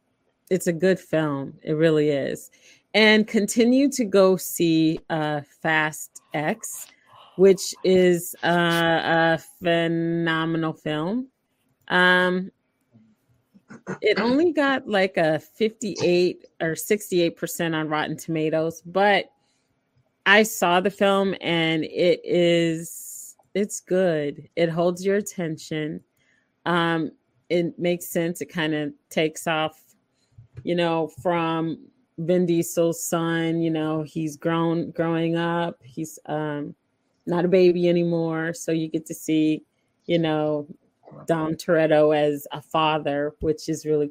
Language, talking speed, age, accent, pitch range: English, 120 wpm, 30-49, American, 155-185 Hz